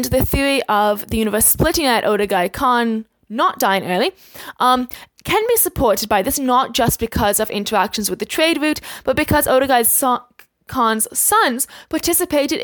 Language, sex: English, female